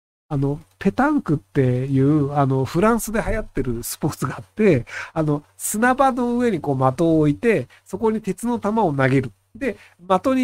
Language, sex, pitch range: Japanese, male, 140-210 Hz